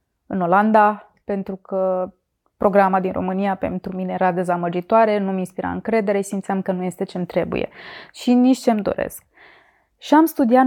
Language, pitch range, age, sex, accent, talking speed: Romanian, 195-235 Hz, 20-39, female, native, 150 wpm